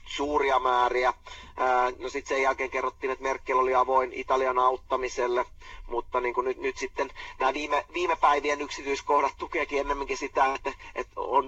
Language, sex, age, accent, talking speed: Finnish, male, 30-49, native, 155 wpm